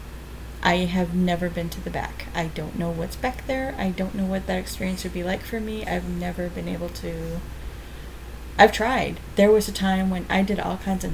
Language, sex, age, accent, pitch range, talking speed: English, female, 30-49, American, 175-205 Hz, 220 wpm